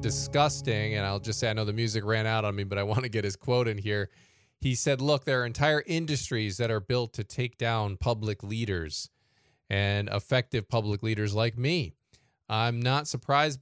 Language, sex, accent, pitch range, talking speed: English, male, American, 105-135 Hz, 205 wpm